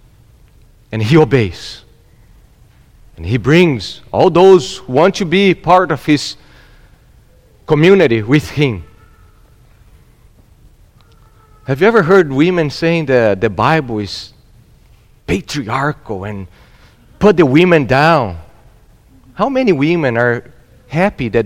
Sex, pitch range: male, 105-155 Hz